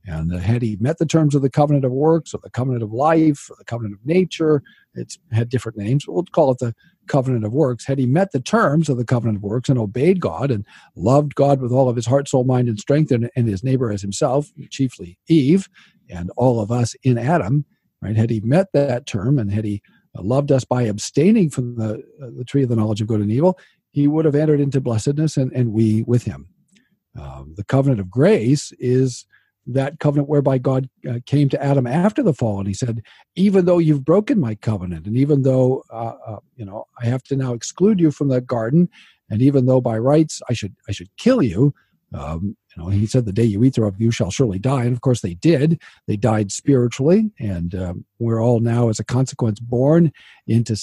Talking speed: 225 wpm